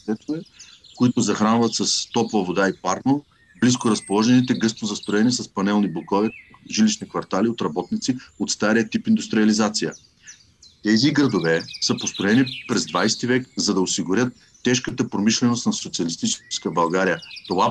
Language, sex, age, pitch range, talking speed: Bulgarian, male, 40-59, 100-130 Hz, 130 wpm